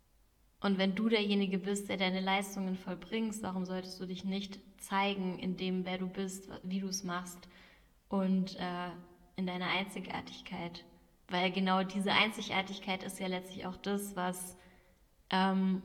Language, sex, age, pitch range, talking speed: German, female, 10-29, 185-205 Hz, 150 wpm